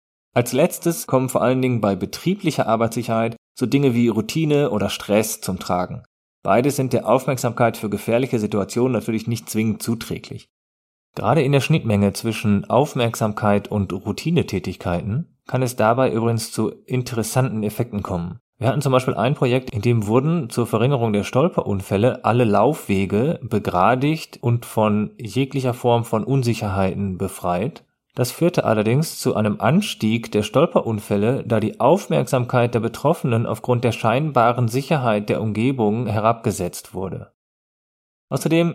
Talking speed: 140 wpm